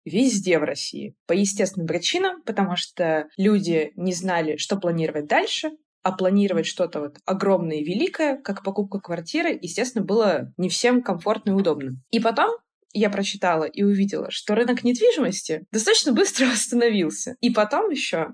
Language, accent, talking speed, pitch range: Russian, native, 150 wpm, 180-235 Hz